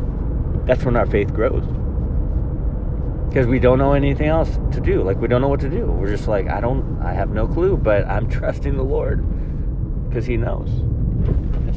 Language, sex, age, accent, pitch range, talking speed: English, male, 30-49, American, 85-115 Hz, 195 wpm